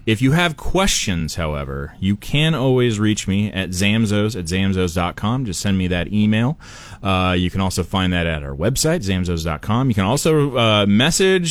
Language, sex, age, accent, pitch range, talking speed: English, male, 30-49, American, 95-120 Hz, 175 wpm